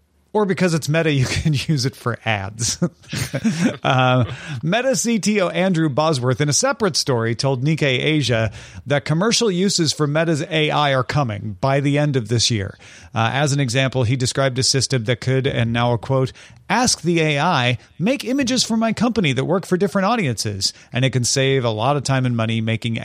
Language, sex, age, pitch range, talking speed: English, male, 40-59, 125-160 Hz, 195 wpm